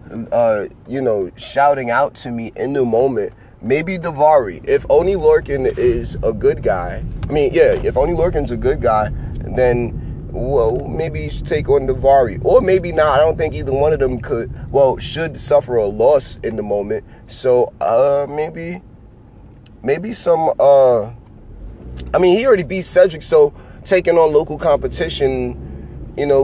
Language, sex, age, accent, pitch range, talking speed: English, male, 30-49, American, 125-155 Hz, 170 wpm